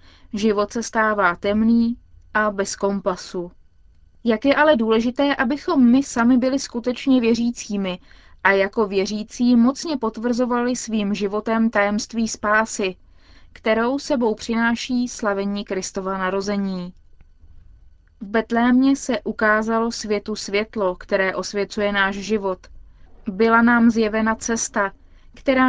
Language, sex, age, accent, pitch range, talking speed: Czech, female, 20-39, native, 200-240 Hz, 110 wpm